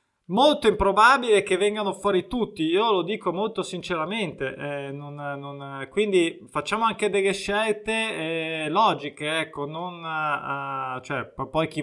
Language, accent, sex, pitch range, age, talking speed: Italian, native, male, 160-200 Hz, 20-39, 135 wpm